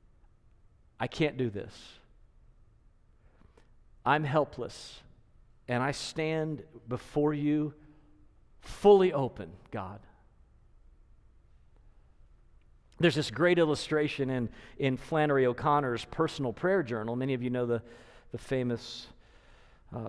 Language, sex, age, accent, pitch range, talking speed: English, male, 40-59, American, 115-150 Hz, 100 wpm